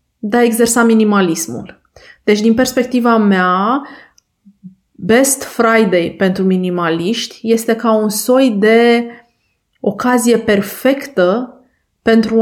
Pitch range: 200-250 Hz